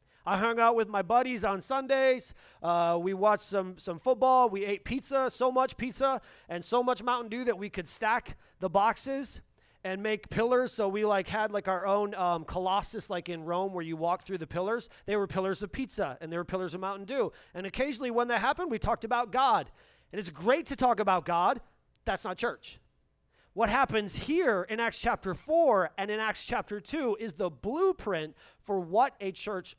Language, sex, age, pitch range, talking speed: English, male, 30-49, 180-240 Hz, 205 wpm